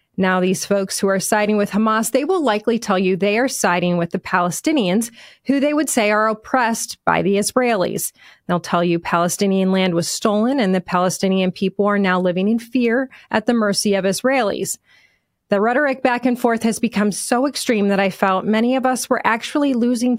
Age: 30-49